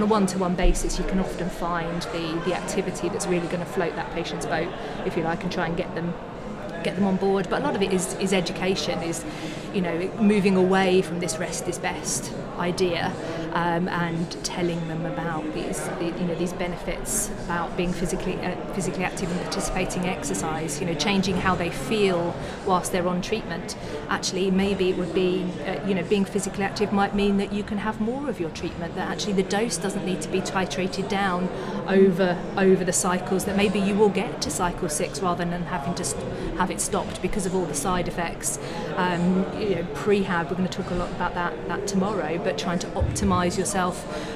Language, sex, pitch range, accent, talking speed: English, female, 175-195 Hz, British, 210 wpm